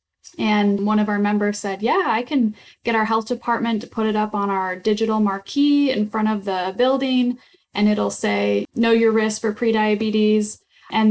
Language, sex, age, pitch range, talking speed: English, female, 10-29, 200-225 Hz, 190 wpm